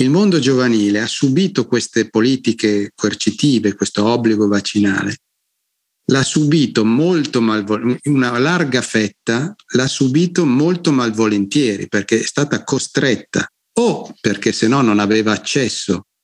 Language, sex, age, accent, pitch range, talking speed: Italian, male, 50-69, native, 105-135 Hz, 120 wpm